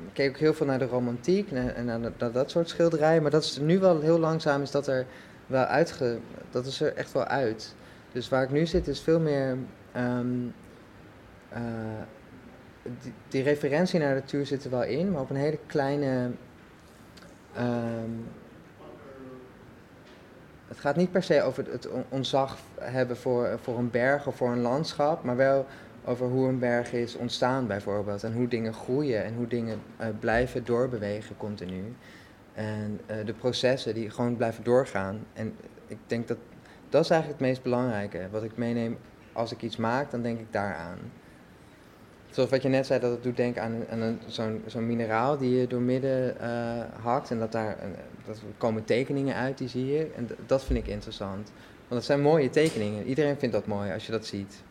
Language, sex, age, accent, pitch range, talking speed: Dutch, male, 20-39, Dutch, 115-135 Hz, 185 wpm